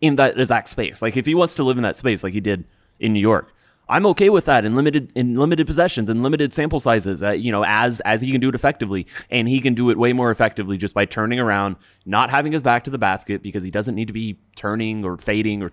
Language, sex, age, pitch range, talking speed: English, male, 20-39, 105-145 Hz, 270 wpm